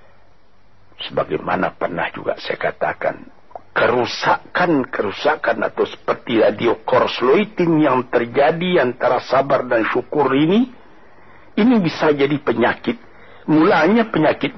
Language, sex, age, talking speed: Malay, male, 60-79, 95 wpm